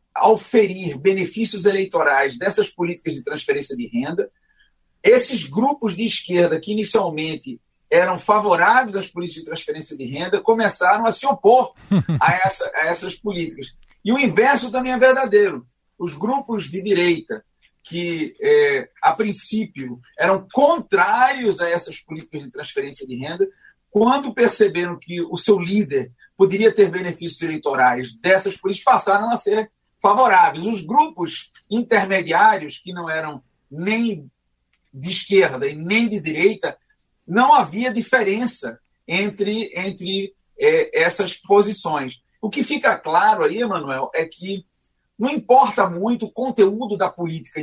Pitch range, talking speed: 175-250 Hz, 135 wpm